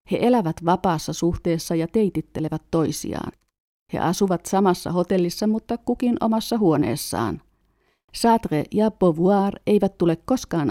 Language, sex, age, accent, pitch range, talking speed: Finnish, female, 50-69, native, 155-210 Hz, 120 wpm